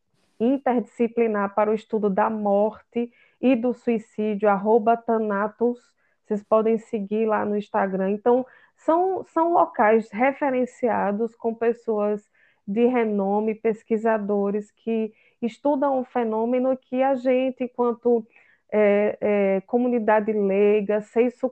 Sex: female